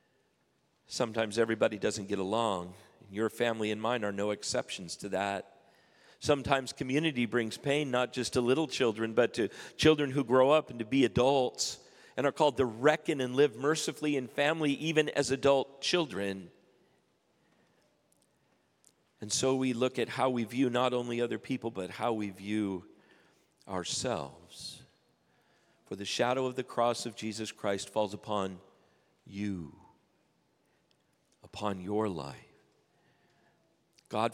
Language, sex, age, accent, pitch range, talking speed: English, male, 50-69, American, 105-130 Hz, 140 wpm